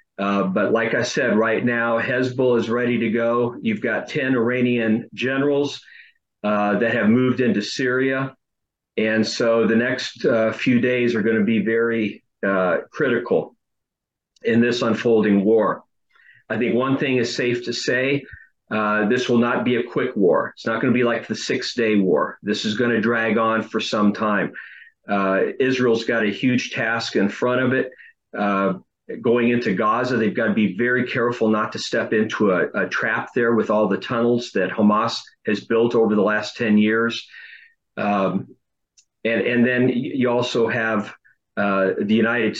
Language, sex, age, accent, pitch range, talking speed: English, male, 50-69, American, 105-120 Hz, 175 wpm